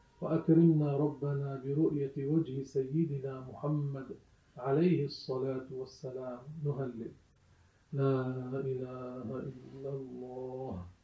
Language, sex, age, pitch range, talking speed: Arabic, male, 40-59, 130-140 Hz, 80 wpm